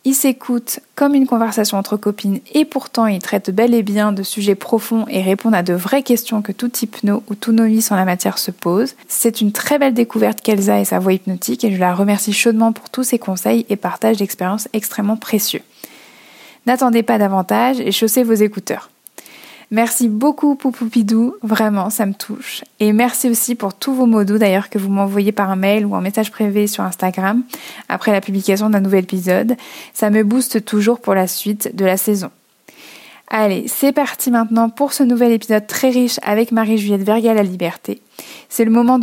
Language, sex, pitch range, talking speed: French, female, 200-235 Hz, 195 wpm